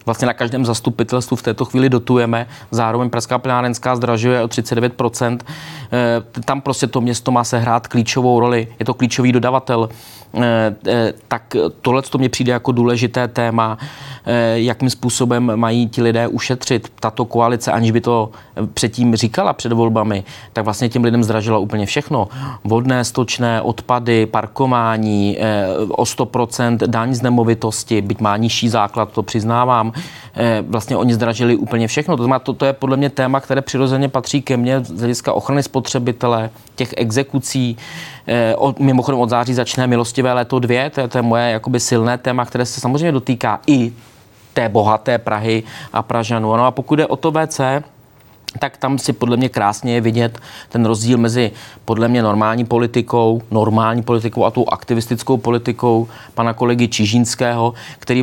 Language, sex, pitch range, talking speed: Czech, male, 115-125 Hz, 155 wpm